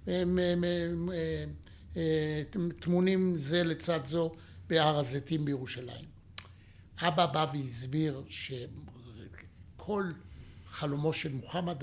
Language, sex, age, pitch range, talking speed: Hebrew, male, 60-79, 125-160 Hz, 70 wpm